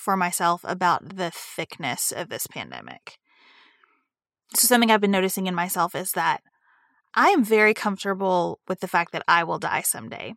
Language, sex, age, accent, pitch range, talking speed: English, female, 20-39, American, 190-230 Hz, 170 wpm